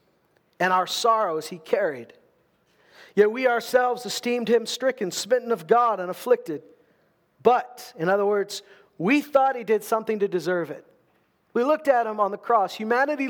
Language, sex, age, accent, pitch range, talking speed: English, male, 40-59, American, 200-265 Hz, 165 wpm